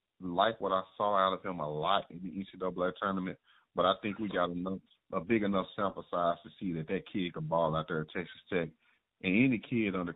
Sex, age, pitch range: male, 30-49, 85-105 Hz